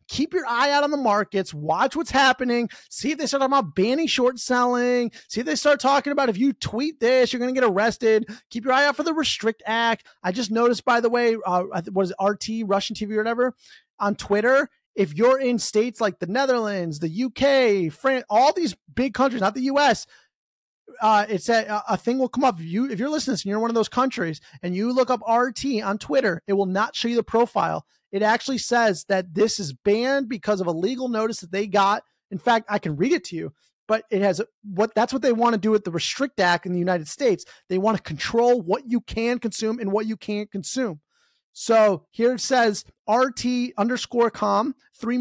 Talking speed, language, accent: 230 wpm, English, American